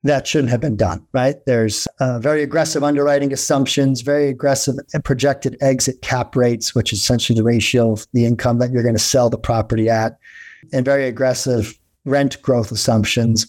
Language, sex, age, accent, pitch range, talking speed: English, male, 40-59, American, 120-145 Hz, 180 wpm